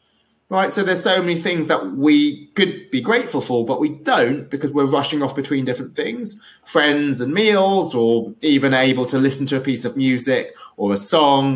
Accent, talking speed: British, 195 wpm